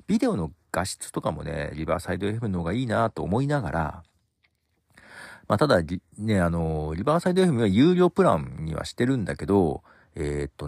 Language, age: Japanese, 40-59